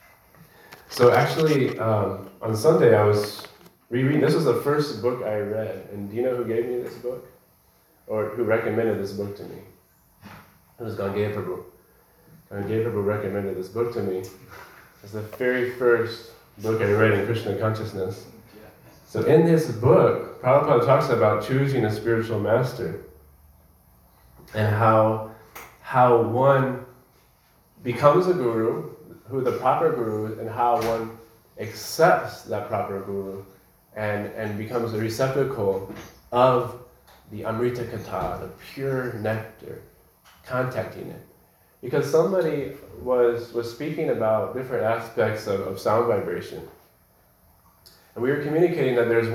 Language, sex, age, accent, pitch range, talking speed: English, male, 30-49, American, 105-125 Hz, 135 wpm